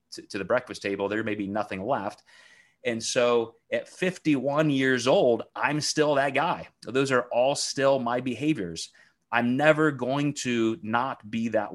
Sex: male